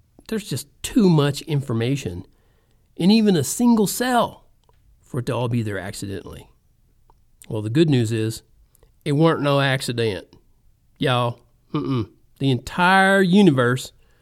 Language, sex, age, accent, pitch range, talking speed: English, male, 50-69, American, 110-155 Hz, 130 wpm